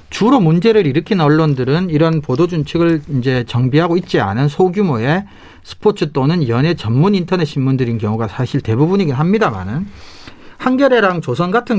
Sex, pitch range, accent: male, 135-195 Hz, native